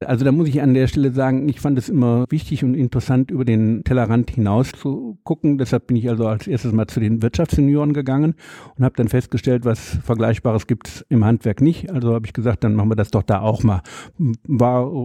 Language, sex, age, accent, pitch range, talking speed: German, male, 60-79, German, 115-145 Hz, 225 wpm